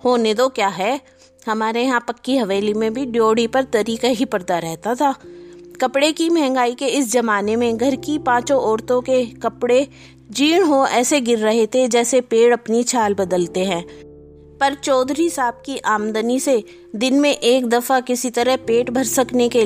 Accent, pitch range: native, 220-265 Hz